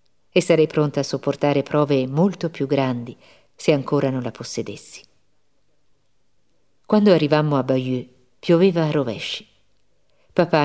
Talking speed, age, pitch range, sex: 125 wpm, 50-69, 130-165 Hz, female